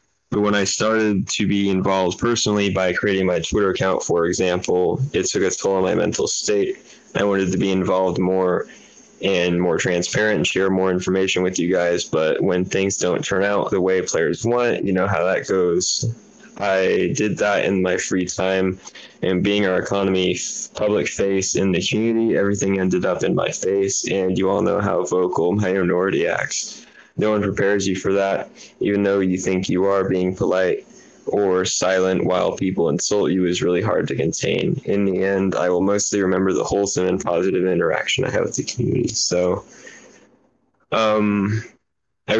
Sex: male